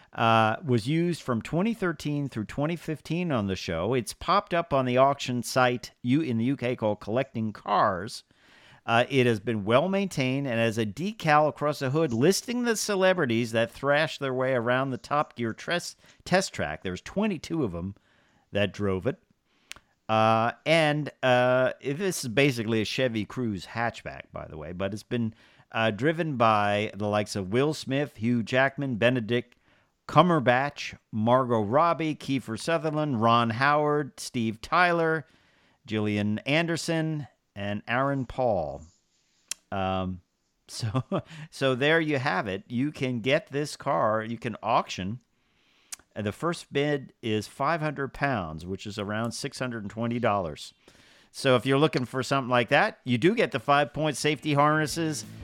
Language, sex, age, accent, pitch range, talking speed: English, male, 50-69, American, 110-150 Hz, 150 wpm